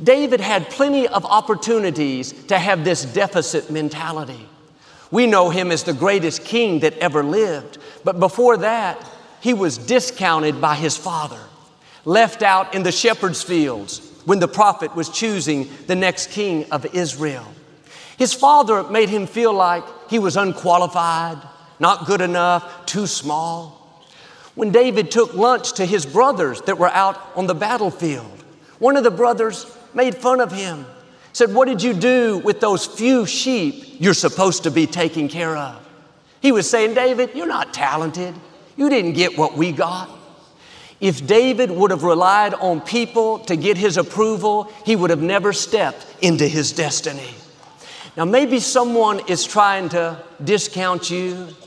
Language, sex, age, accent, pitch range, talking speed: English, male, 50-69, American, 165-220 Hz, 160 wpm